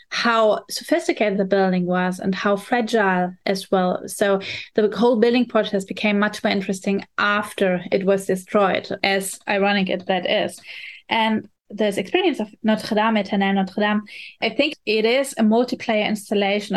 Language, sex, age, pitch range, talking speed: English, female, 20-39, 195-225 Hz, 155 wpm